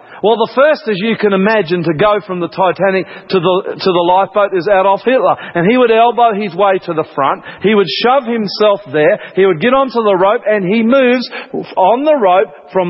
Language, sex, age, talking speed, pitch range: English, male, 40-59, 220 wpm, 195-245 Hz